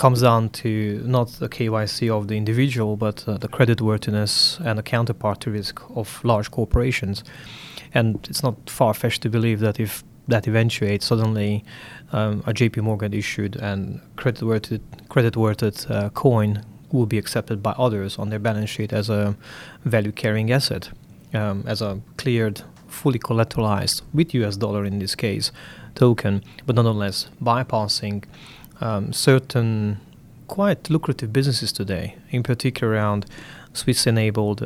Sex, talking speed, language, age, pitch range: male, 145 wpm, English, 20-39, 105-125 Hz